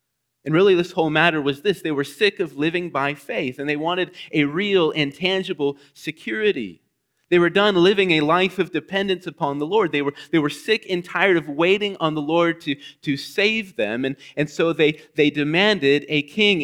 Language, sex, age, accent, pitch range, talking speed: English, male, 30-49, American, 140-175 Hz, 205 wpm